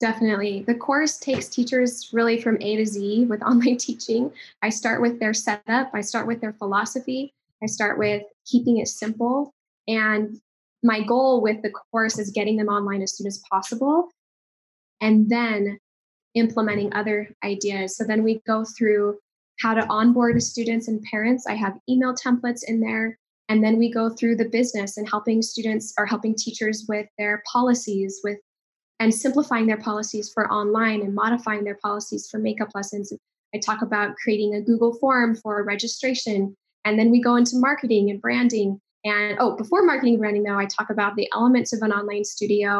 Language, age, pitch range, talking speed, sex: English, 10-29, 210-240 Hz, 180 wpm, female